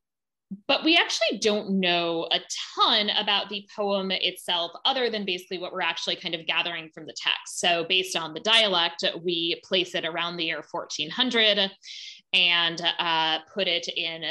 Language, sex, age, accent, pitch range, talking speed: English, female, 20-39, American, 170-215 Hz, 170 wpm